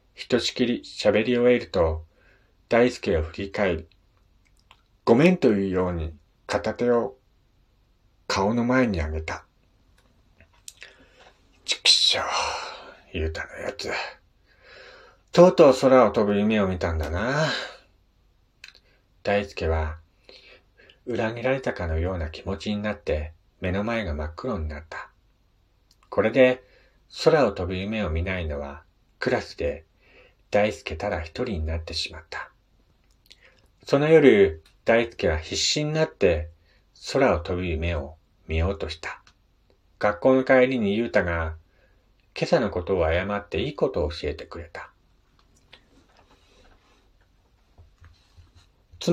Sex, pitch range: male, 85-120 Hz